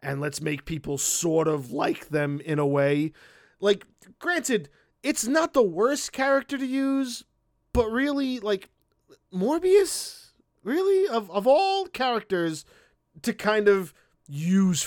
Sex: male